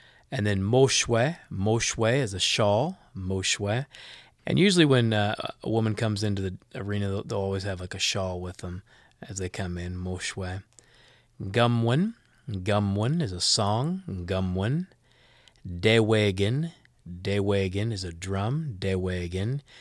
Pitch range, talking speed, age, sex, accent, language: 95-125 Hz, 135 wpm, 30-49, male, American, English